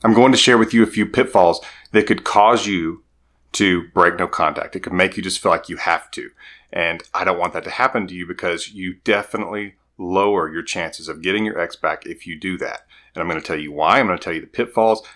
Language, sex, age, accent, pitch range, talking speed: English, male, 30-49, American, 90-115 Hz, 255 wpm